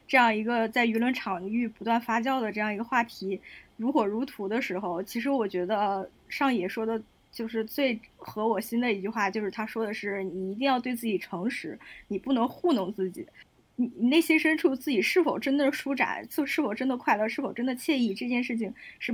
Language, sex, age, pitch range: Chinese, female, 20-39, 215-265 Hz